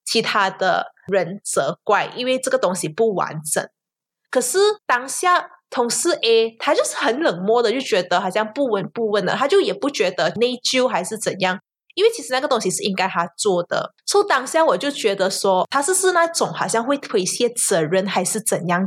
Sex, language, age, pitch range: female, Chinese, 20-39, 190-285 Hz